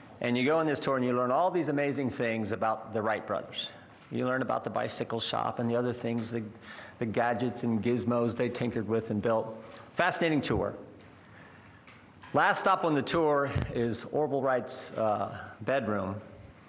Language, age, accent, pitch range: English, 50-69, American, 115-150 Hz